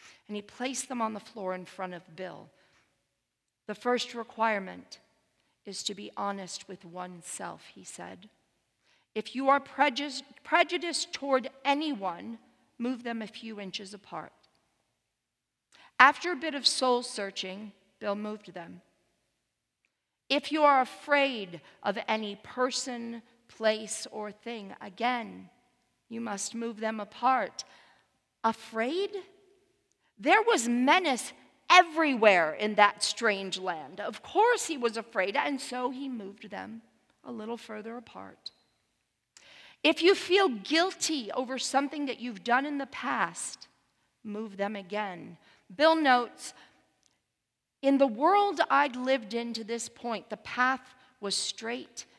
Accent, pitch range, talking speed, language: American, 205-275 Hz, 130 wpm, English